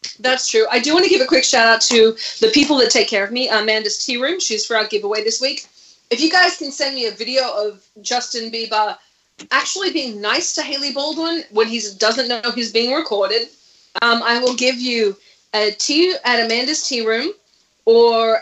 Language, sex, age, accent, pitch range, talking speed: English, female, 30-49, Australian, 215-260 Hz, 210 wpm